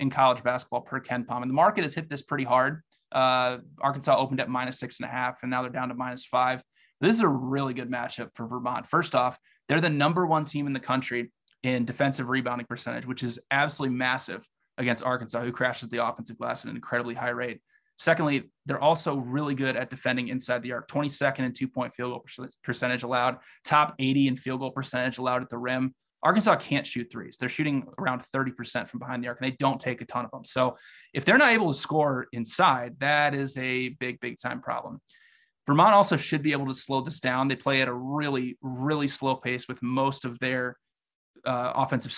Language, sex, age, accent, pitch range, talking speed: English, male, 20-39, American, 125-135 Hz, 220 wpm